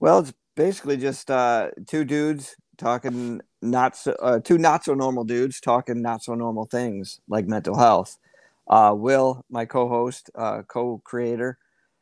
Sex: male